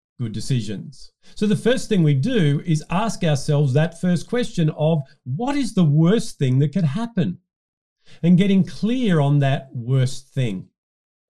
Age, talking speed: 50-69, 160 wpm